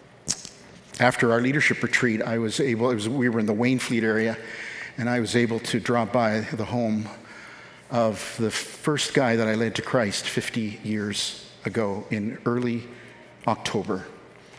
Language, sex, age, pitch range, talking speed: English, male, 50-69, 110-125 Hz, 165 wpm